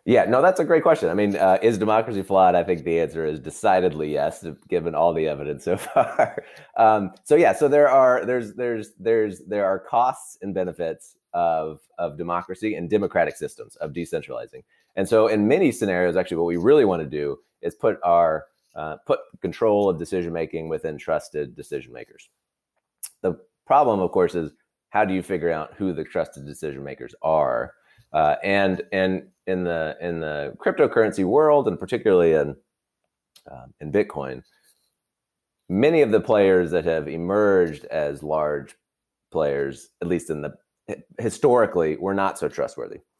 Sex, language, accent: male, English, American